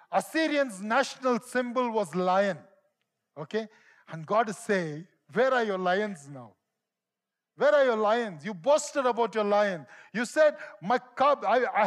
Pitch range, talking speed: 190-265 Hz, 145 wpm